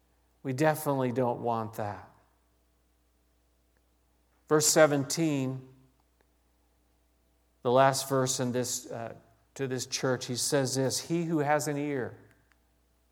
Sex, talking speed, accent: male, 110 wpm, American